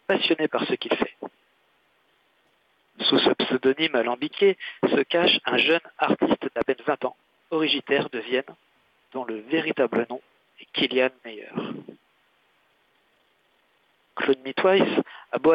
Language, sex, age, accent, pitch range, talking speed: French, male, 50-69, French, 130-170 Hz, 125 wpm